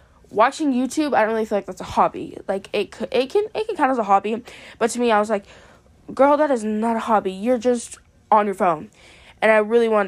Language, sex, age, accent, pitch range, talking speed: English, female, 10-29, American, 205-255 Hz, 250 wpm